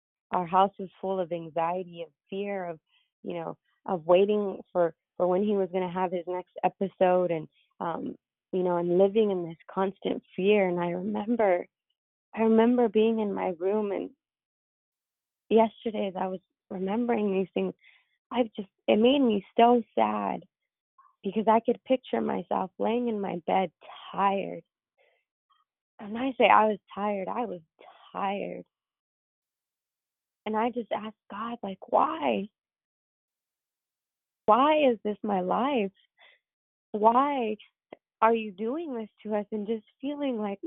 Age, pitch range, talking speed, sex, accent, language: 20-39, 190-235 Hz, 150 wpm, female, American, English